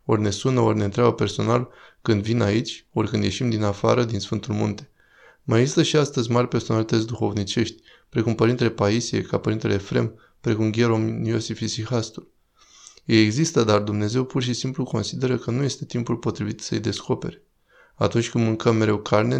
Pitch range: 105-125 Hz